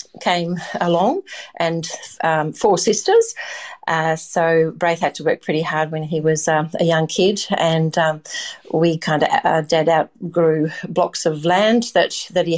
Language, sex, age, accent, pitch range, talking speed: English, female, 40-59, Australian, 160-185 Hz, 165 wpm